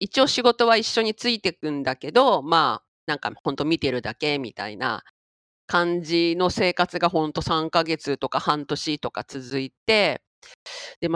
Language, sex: Japanese, female